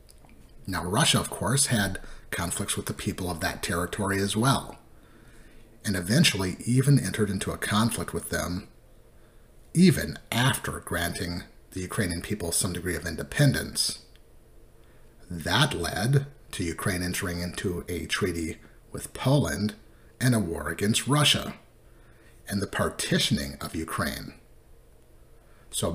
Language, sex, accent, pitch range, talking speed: English, male, American, 90-120 Hz, 125 wpm